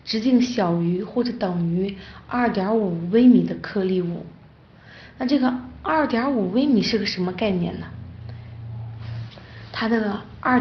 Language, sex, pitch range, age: Chinese, female, 190-230 Hz, 20-39